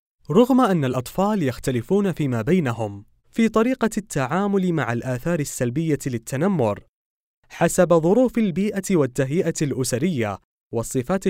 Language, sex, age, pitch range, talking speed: Arabic, male, 20-39, 125-185 Hz, 100 wpm